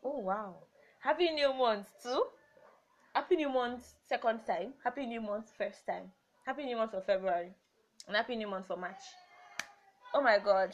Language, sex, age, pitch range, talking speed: English, female, 20-39, 190-250 Hz, 170 wpm